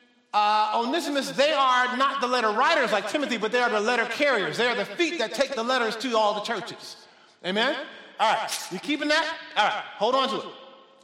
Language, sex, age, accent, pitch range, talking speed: English, male, 50-69, American, 240-305 Hz, 215 wpm